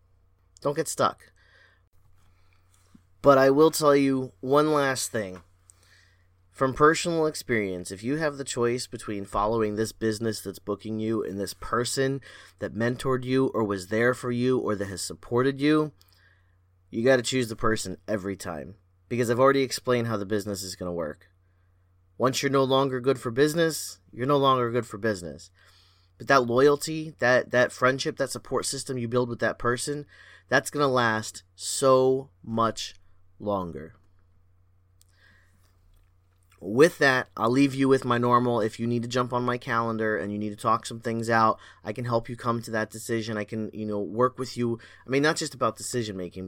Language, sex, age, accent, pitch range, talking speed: English, male, 30-49, American, 95-130 Hz, 180 wpm